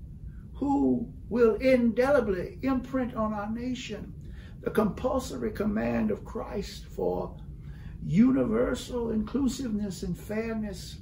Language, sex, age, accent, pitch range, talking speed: English, male, 60-79, American, 160-240 Hz, 95 wpm